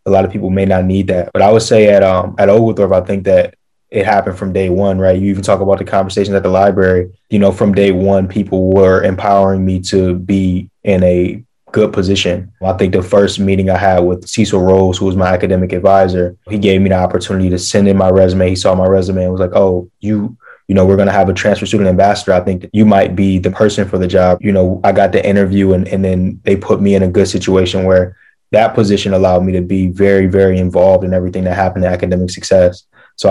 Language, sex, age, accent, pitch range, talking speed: English, male, 20-39, American, 90-100 Hz, 250 wpm